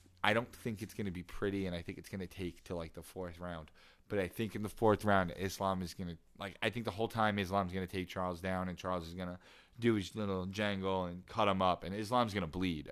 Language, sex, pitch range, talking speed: English, male, 85-100 Hz, 295 wpm